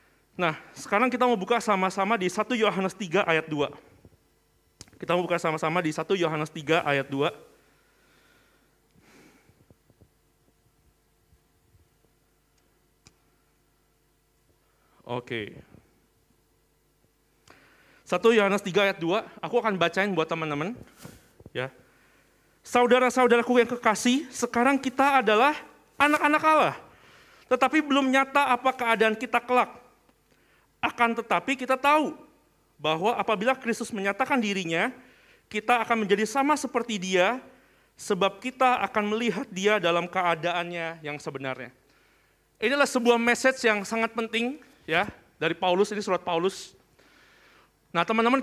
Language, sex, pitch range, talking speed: Indonesian, male, 175-250 Hz, 110 wpm